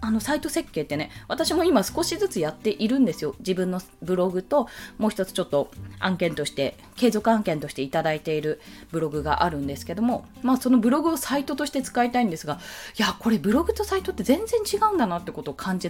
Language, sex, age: Japanese, female, 20-39